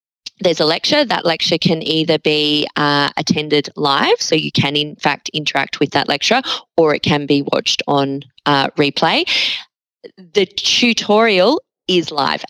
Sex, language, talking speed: female, English, 155 wpm